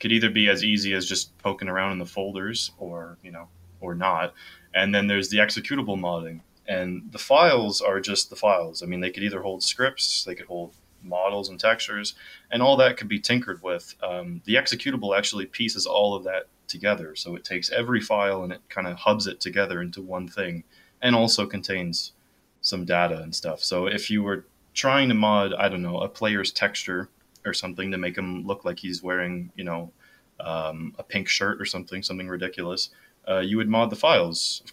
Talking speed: 205 wpm